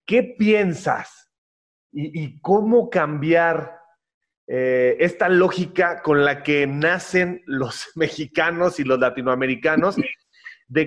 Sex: male